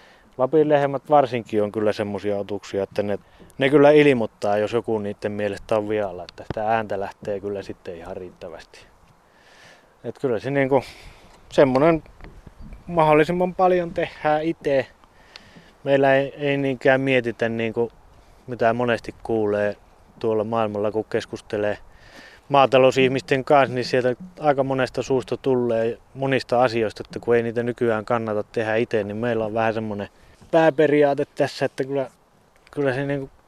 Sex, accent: male, native